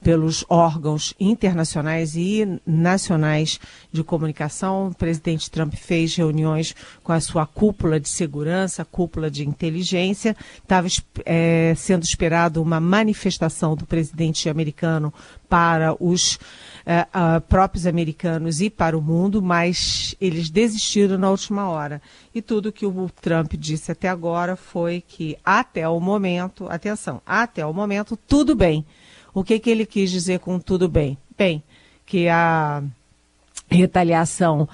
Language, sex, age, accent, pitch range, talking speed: Portuguese, female, 40-59, Brazilian, 160-190 Hz, 135 wpm